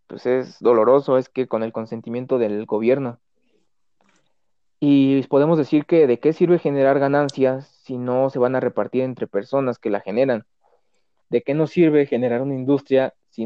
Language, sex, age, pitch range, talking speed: Spanish, male, 30-49, 120-155 Hz, 170 wpm